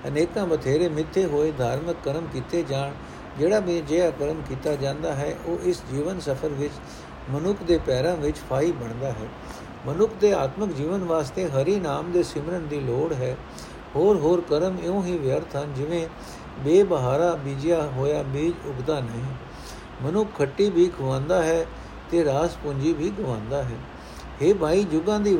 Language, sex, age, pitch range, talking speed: Punjabi, male, 60-79, 135-175 Hz, 165 wpm